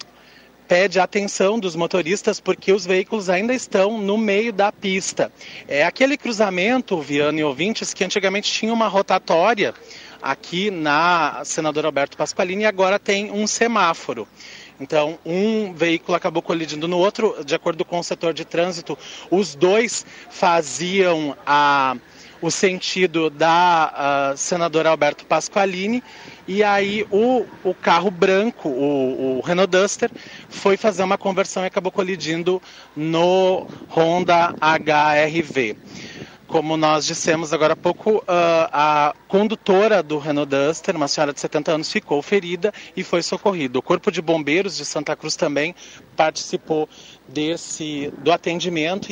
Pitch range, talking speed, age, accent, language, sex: 155-200 Hz, 135 wpm, 30-49, Brazilian, Portuguese, male